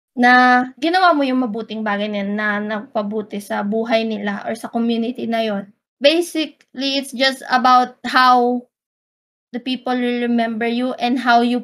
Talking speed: 155 wpm